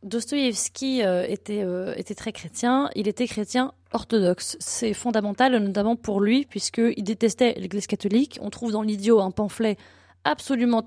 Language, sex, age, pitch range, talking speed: French, female, 20-39, 200-235 Hz, 140 wpm